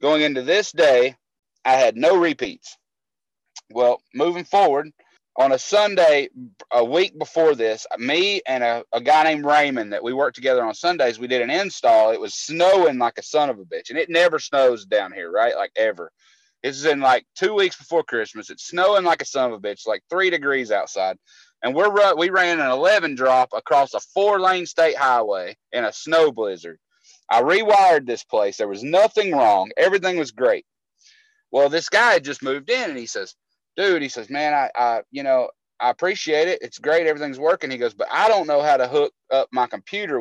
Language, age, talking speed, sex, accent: English, 30-49, 205 wpm, male, American